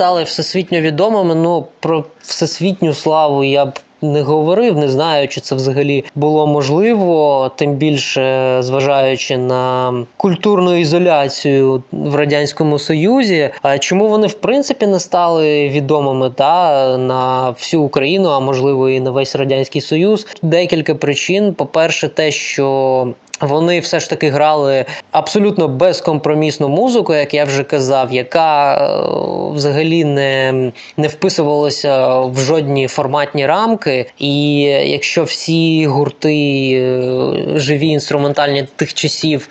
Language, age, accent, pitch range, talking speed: Ukrainian, 20-39, native, 140-165 Hz, 120 wpm